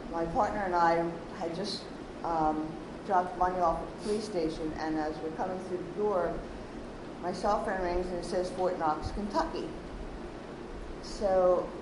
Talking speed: 160 wpm